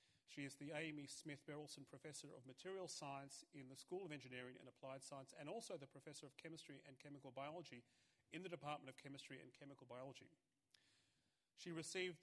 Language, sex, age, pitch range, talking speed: English, male, 40-59, 130-155 Hz, 175 wpm